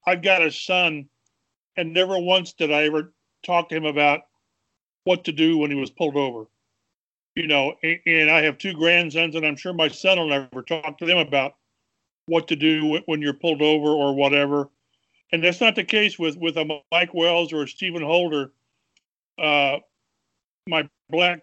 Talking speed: 190 wpm